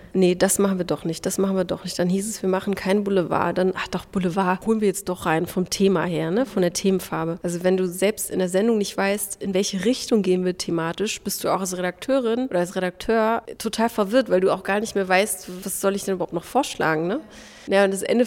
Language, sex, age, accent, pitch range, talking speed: German, female, 30-49, German, 185-210 Hz, 255 wpm